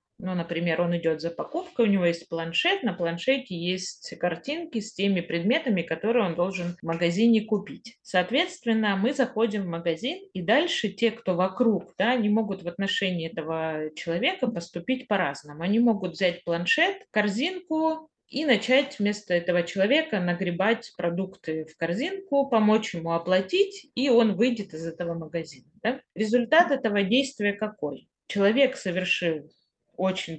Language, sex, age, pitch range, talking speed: Russian, female, 30-49, 170-235 Hz, 140 wpm